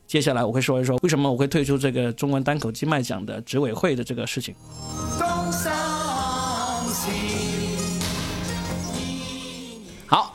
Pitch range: 130-175 Hz